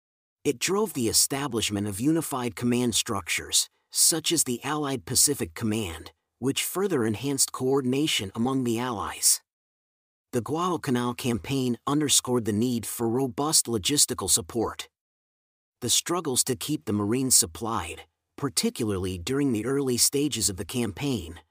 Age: 40-59